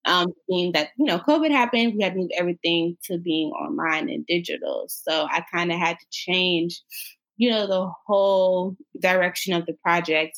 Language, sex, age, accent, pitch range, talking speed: English, female, 20-39, American, 170-230 Hz, 185 wpm